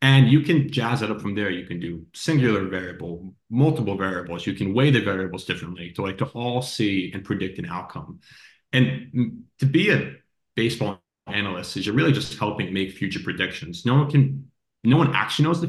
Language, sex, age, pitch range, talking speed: English, male, 30-49, 95-130 Hz, 200 wpm